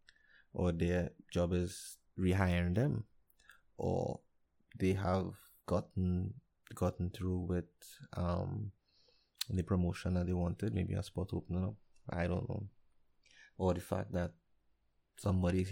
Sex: male